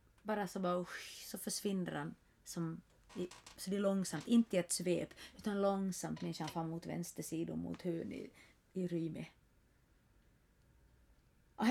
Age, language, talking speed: 30-49, Swedish, 145 wpm